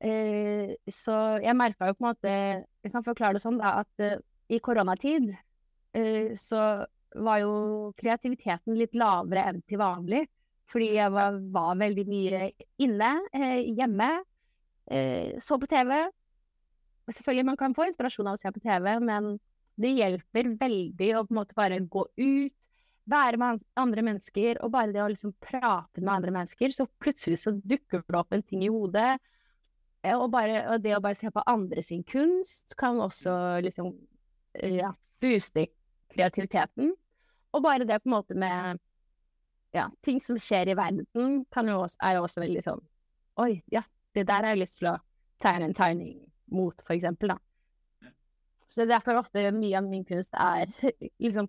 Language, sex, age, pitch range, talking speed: English, female, 20-39, 190-235 Hz, 165 wpm